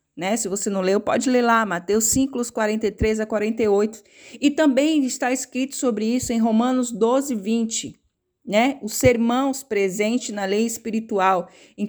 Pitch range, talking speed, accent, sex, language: 210-260 Hz, 155 wpm, Brazilian, female, Portuguese